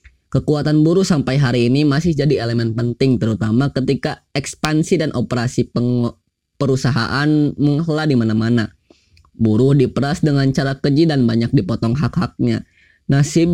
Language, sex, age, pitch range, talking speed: Indonesian, female, 20-39, 115-150 Hz, 130 wpm